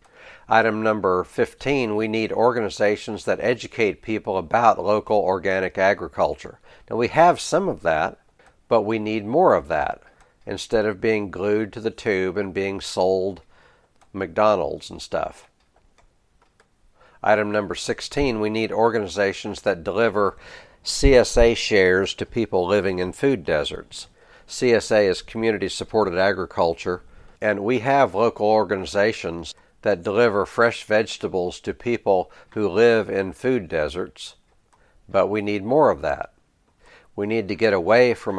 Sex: male